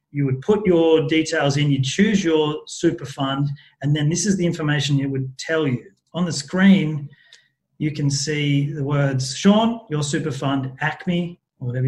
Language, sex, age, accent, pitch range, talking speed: English, male, 30-49, Australian, 135-165 Hz, 180 wpm